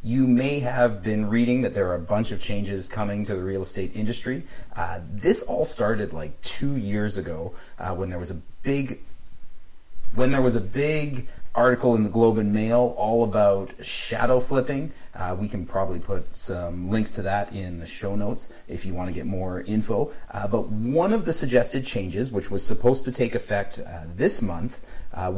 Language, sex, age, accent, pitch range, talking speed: English, male, 30-49, American, 95-125 Hz, 200 wpm